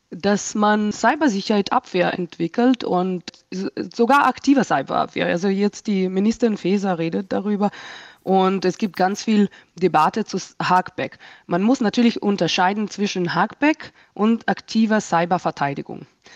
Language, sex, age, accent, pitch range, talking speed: German, female, 20-39, German, 180-230 Hz, 120 wpm